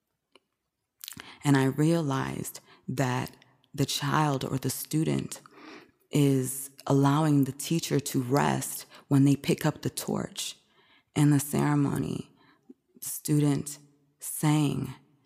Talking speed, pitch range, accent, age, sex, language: 100 wpm, 130-150 Hz, American, 20-39, female, English